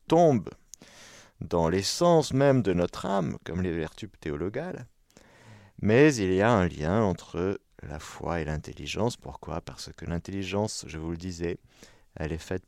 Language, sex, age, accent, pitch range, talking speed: French, male, 50-69, French, 85-125 Hz, 155 wpm